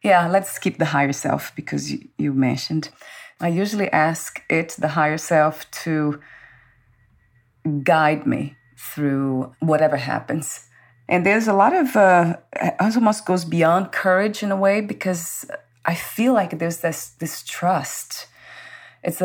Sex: female